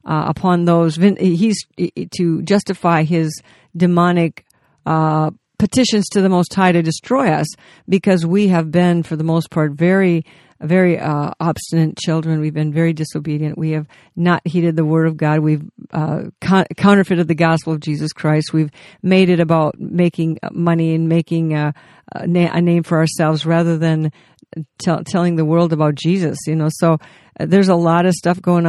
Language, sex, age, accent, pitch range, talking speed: English, female, 50-69, American, 160-180 Hz, 170 wpm